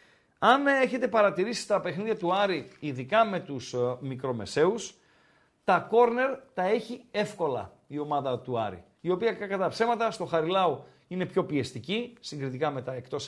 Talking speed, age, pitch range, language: 150 wpm, 50-69, 145-215 Hz, Greek